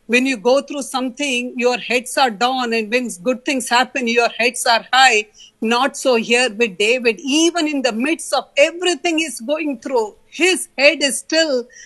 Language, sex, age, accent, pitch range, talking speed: English, female, 50-69, Indian, 245-305 Hz, 180 wpm